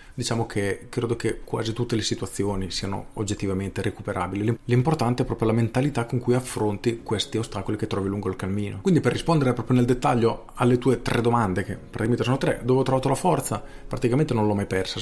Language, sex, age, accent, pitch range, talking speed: Italian, male, 40-59, native, 100-120 Hz, 200 wpm